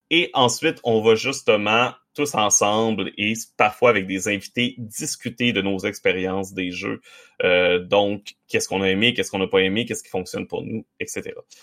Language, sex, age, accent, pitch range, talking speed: French, male, 30-49, Canadian, 100-155 Hz, 180 wpm